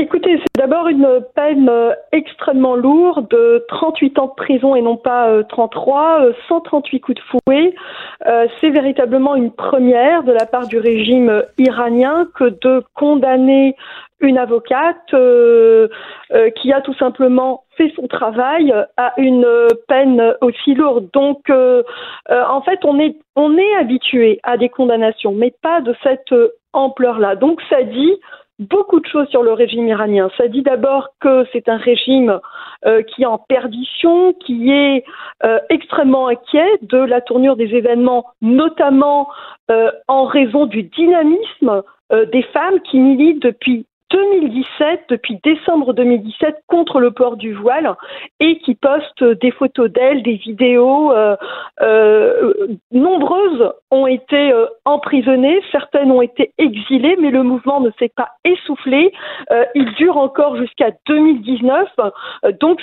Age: 40-59